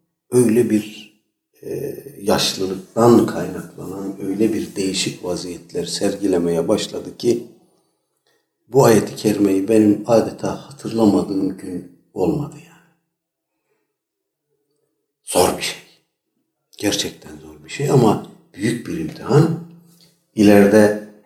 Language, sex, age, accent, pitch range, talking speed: Turkish, male, 60-79, native, 90-140 Hz, 95 wpm